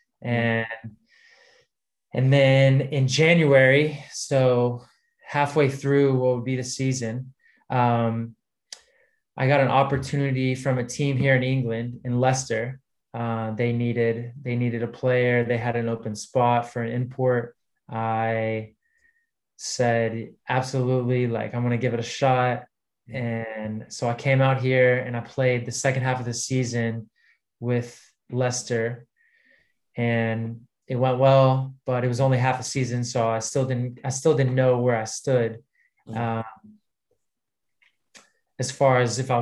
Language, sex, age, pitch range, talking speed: English, male, 20-39, 120-135 Hz, 150 wpm